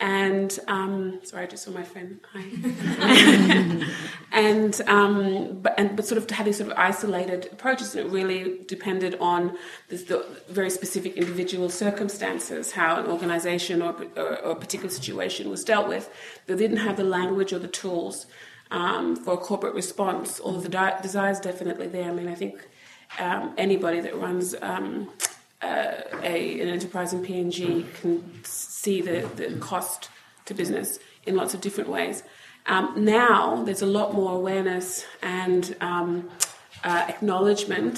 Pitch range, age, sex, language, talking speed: 175-195 Hz, 30-49, female, English, 165 wpm